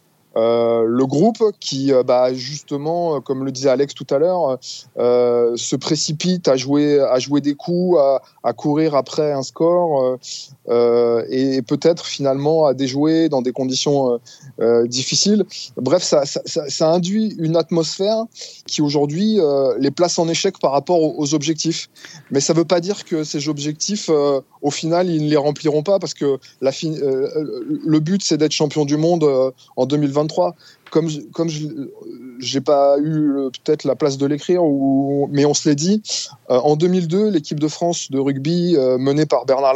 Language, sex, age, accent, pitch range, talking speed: French, male, 20-39, French, 135-165 Hz, 190 wpm